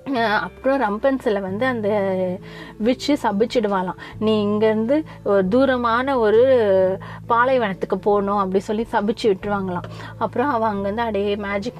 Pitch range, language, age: 210-255 Hz, Tamil, 30-49